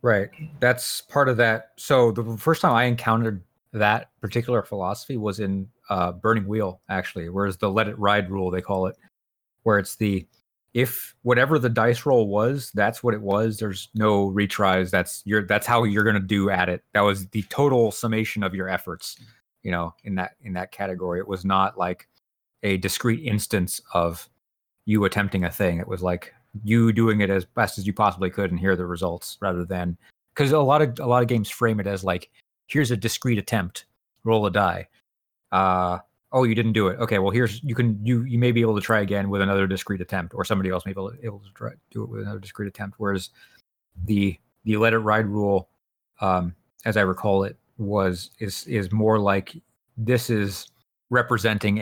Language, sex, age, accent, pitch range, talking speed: English, male, 30-49, American, 95-115 Hz, 205 wpm